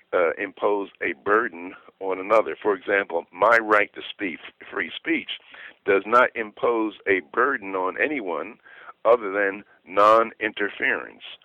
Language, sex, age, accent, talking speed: English, male, 60-79, American, 130 wpm